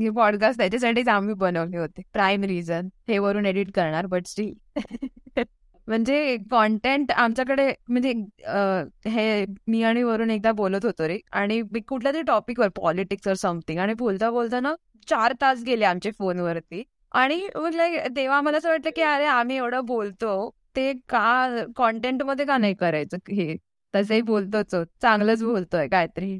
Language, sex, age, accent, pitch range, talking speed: Marathi, female, 20-39, native, 190-230 Hz, 150 wpm